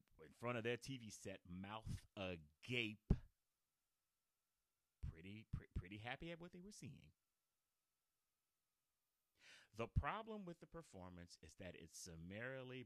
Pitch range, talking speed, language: 95-130 Hz, 120 wpm, English